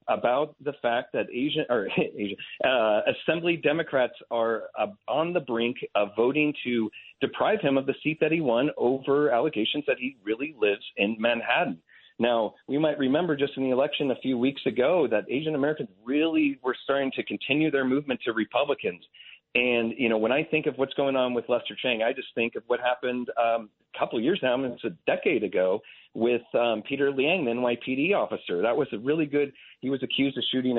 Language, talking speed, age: English, 205 wpm, 40-59